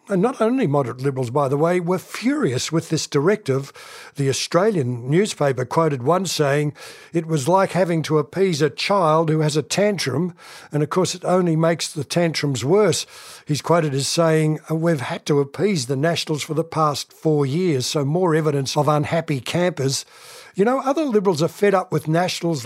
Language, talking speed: English, 185 wpm